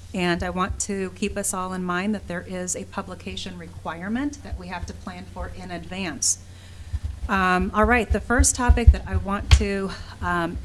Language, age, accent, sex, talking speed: English, 30-49, American, female, 190 wpm